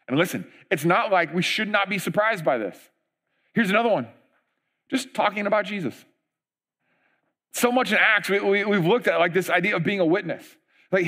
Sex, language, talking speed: male, English, 205 wpm